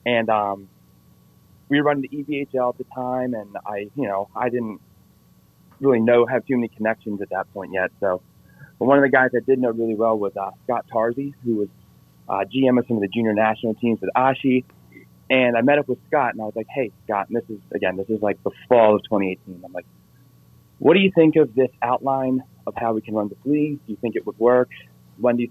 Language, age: English, 30-49